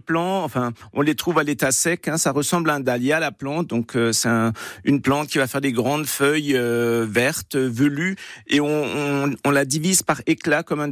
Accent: French